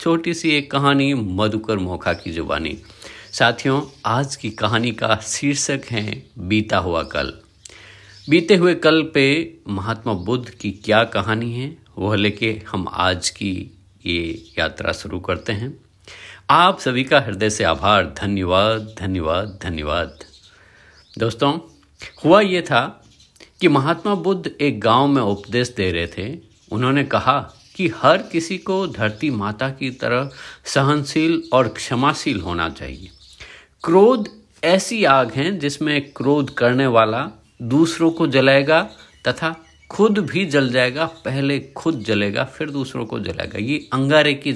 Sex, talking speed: male, 135 wpm